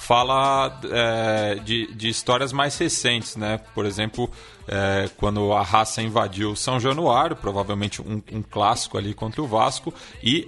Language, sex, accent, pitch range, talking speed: Portuguese, male, Brazilian, 110-140 Hz, 150 wpm